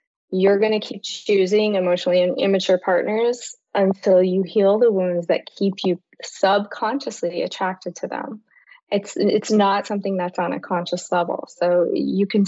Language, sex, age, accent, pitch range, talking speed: English, female, 20-39, American, 180-215 Hz, 155 wpm